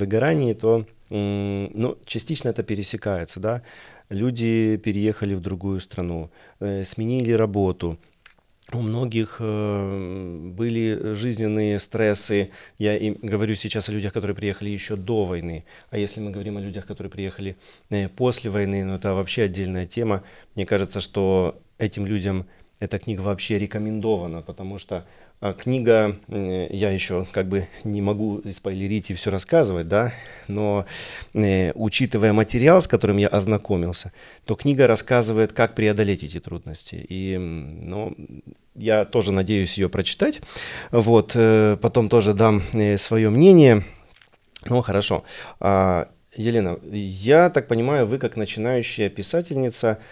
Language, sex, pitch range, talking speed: Russian, male, 95-110 Hz, 125 wpm